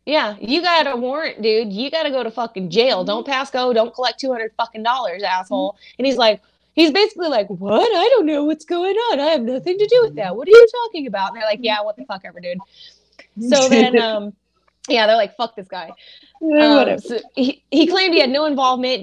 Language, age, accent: English, 20-39, American